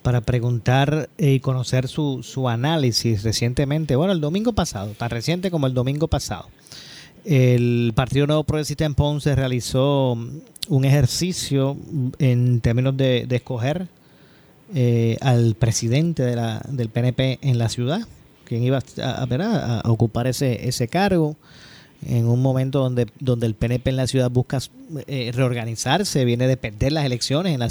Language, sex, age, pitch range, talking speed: Spanish, male, 30-49, 120-145 Hz, 155 wpm